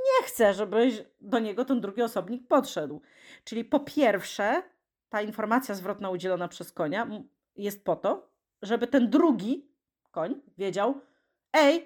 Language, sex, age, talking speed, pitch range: Polish, female, 30-49, 135 wpm, 180-240 Hz